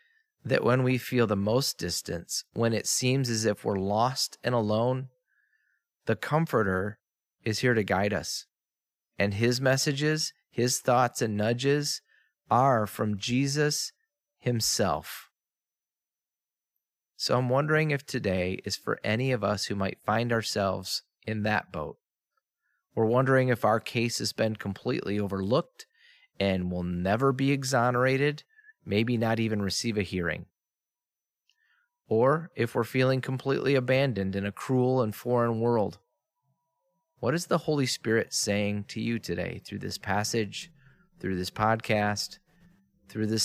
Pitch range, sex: 105-140 Hz, male